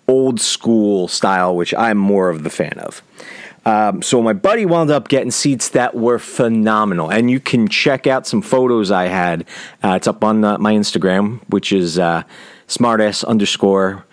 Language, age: English, 40-59